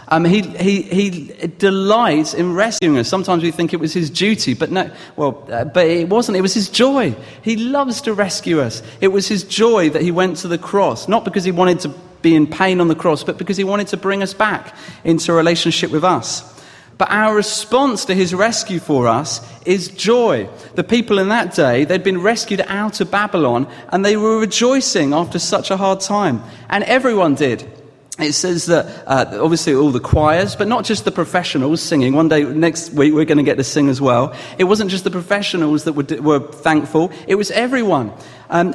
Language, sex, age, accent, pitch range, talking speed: English, male, 30-49, British, 145-200 Hz, 210 wpm